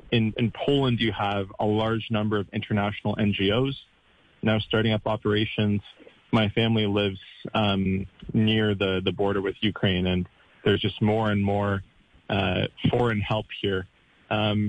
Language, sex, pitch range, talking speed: Spanish, male, 100-115 Hz, 145 wpm